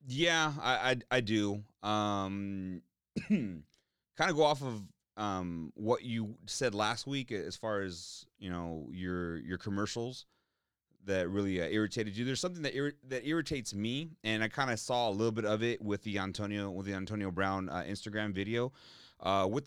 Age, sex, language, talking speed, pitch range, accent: 30-49, male, English, 180 wpm, 90-110 Hz, American